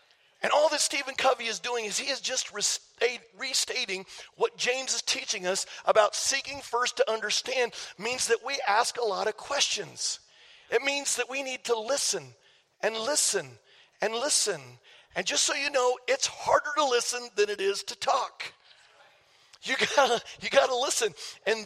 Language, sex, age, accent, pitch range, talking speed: English, male, 50-69, American, 220-285 Hz, 165 wpm